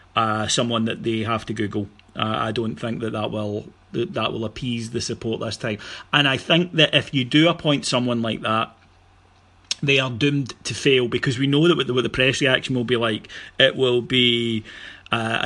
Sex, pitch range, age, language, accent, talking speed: male, 115-135 Hz, 30-49, English, British, 200 wpm